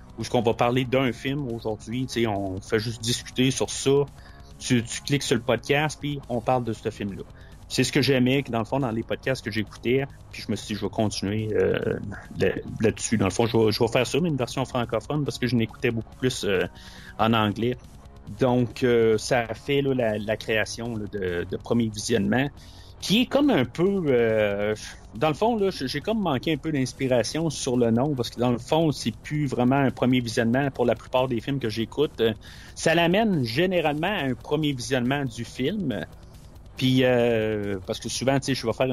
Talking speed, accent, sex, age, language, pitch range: 220 wpm, Canadian, male, 30-49, French, 105-130 Hz